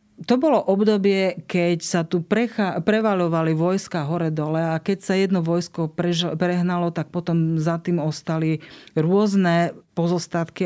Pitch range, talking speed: 155-175 Hz, 135 wpm